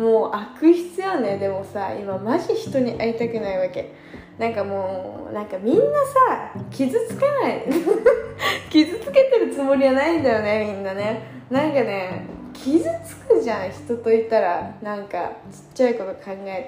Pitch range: 210-310 Hz